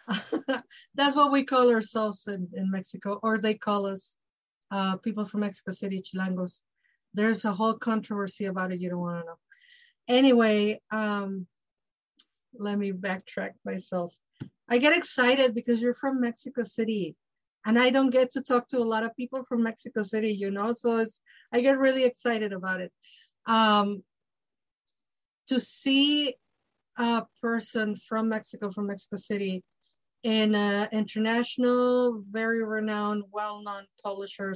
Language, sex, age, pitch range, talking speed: English, female, 50-69, 200-245 Hz, 145 wpm